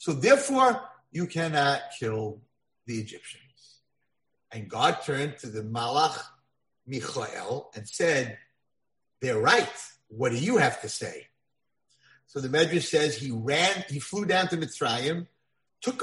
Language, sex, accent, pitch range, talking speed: English, male, American, 130-195 Hz, 135 wpm